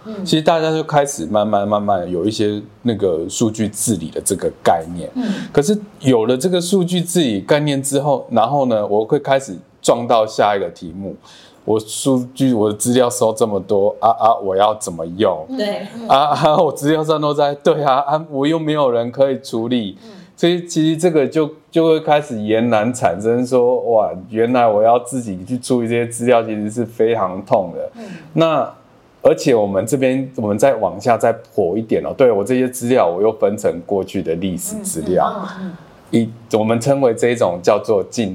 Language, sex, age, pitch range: Chinese, male, 20-39, 110-160 Hz